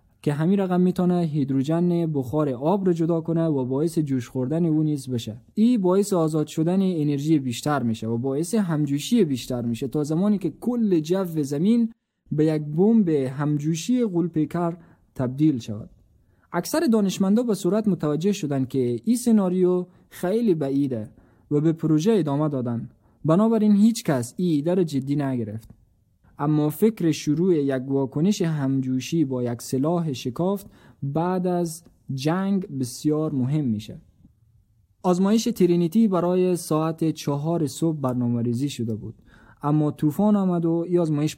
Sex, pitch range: male, 130-175 Hz